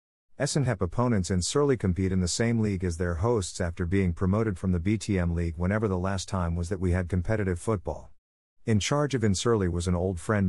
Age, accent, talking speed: 50-69, American, 210 wpm